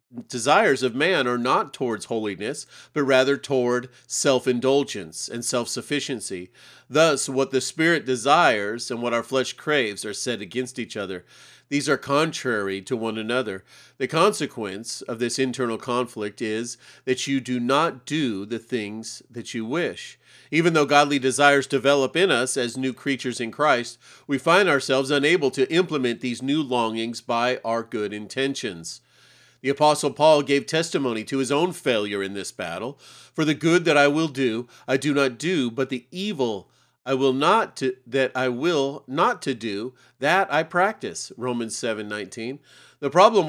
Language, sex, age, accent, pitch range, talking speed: English, male, 40-59, American, 120-150 Hz, 165 wpm